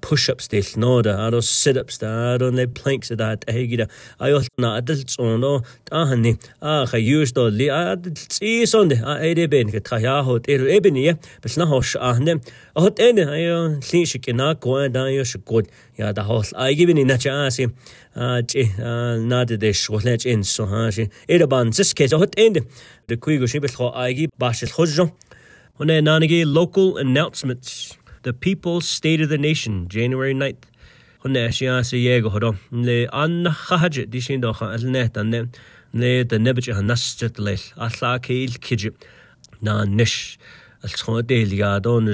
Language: English